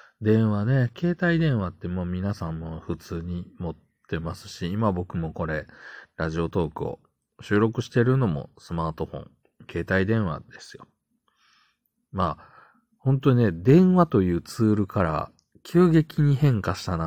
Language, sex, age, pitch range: Japanese, male, 40-59, 80-115 Hz